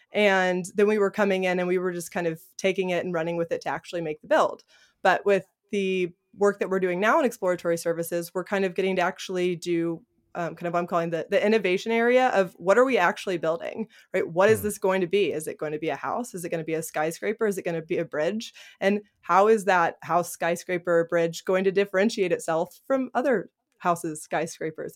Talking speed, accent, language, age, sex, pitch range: 240 wpm, American, English, 20-39, female, 170-200 Hz